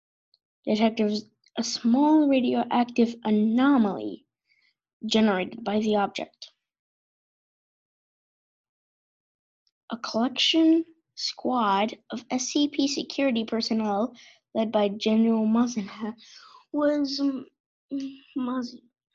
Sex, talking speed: female, 70 wpm